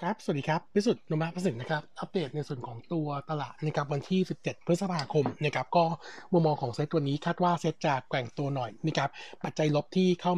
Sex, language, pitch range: male, Thai, 140-170 Hz